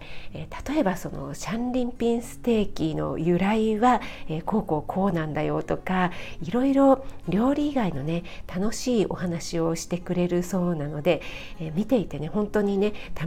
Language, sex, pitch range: Japanese, female, 170-220 Hz